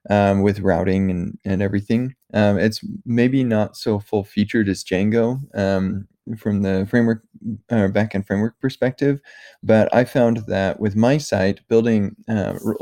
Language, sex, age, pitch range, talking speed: English, male, 20-39, 95-110 Hz, 145 wpm